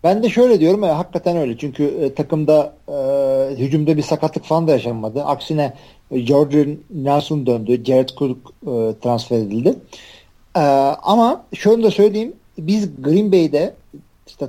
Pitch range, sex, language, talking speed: 135-180 Hz, male, Turkish, 145 wpm